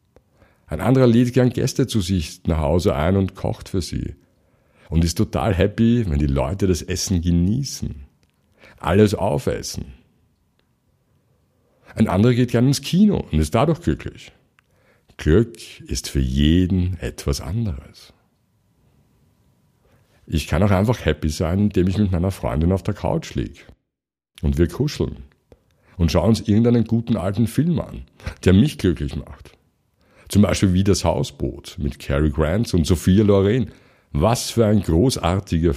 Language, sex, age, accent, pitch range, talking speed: German, male, 60-79, German, 90-115 Hz, 145 wpm